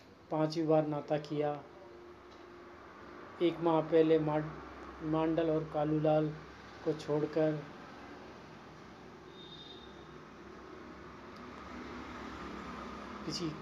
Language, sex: Hindi, male